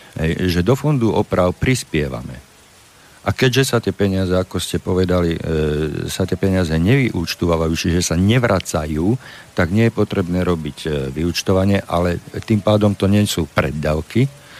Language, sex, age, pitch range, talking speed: Slovak, male, 50-69, 85-105 Hz, 145 wpm